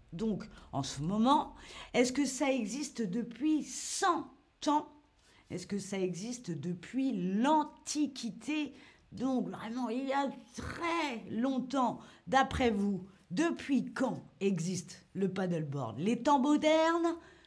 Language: French